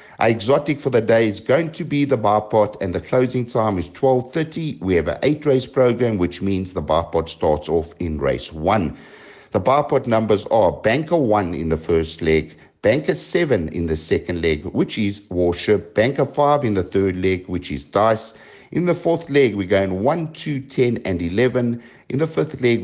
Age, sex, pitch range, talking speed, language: 60-79, male, 90-130 Hz, 200 wpm, English